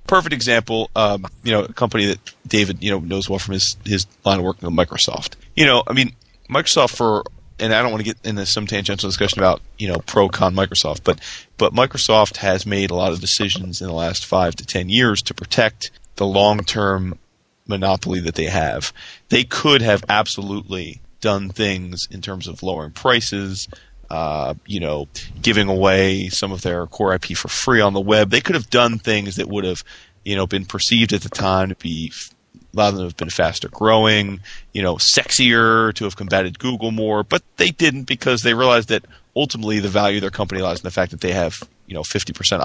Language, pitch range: English, 95-115 Hz